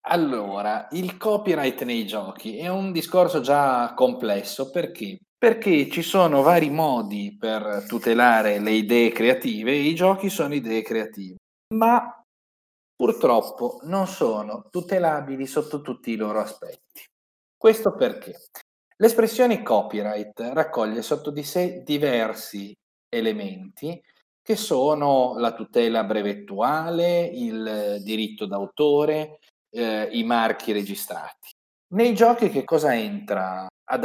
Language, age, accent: Italian, 40-59, native